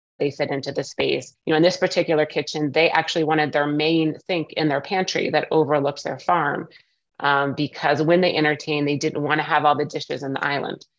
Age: 30-49